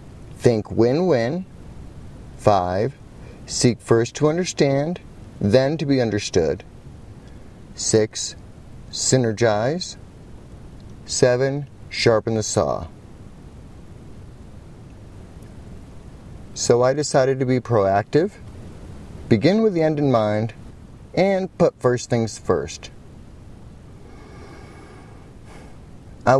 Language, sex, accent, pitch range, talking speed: English, male, American, 100-135 Hz, 80 wpm